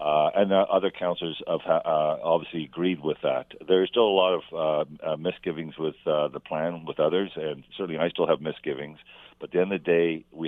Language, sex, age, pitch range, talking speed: English, male, 50-69, 75-85 Hz, 225 wpm